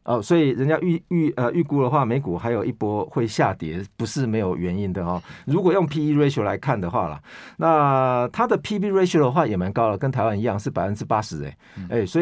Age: 50-69